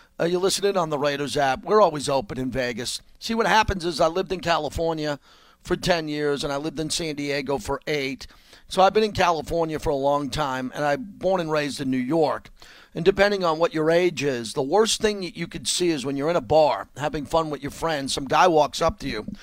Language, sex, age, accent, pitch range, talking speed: English, male, 40-59, American, 165-245 Hz, 245 wpm